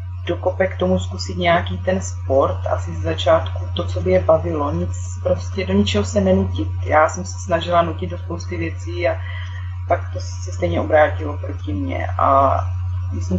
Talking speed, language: 175 wpm, Czech